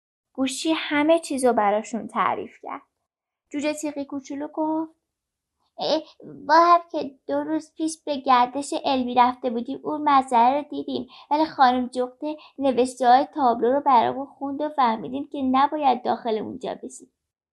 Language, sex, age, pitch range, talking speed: Persian, female, 10-29, 235-305 Hz, 140 wpm